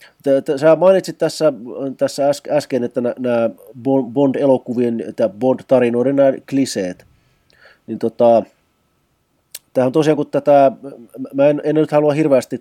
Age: 30-49